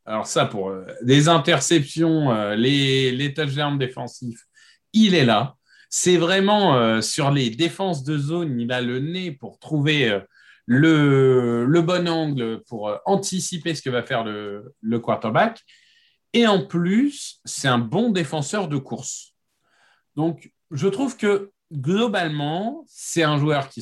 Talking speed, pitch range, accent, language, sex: 155 wpm, 125-170 Hz, French, French, male